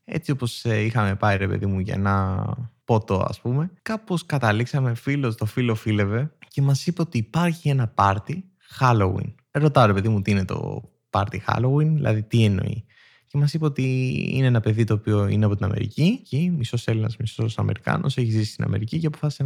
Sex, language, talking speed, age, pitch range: male, Greek, 190 wpm, 20-39, 105-155 Hz